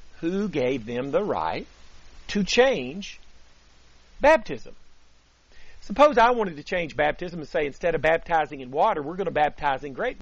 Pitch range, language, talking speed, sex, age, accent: 135-205 Hz, English, 160 wpm, male, 50-69, American